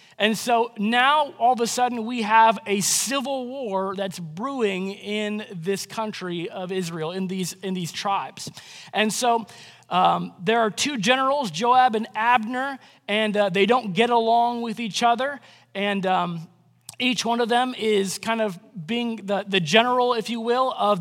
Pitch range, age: 190-245 Hz, 20-39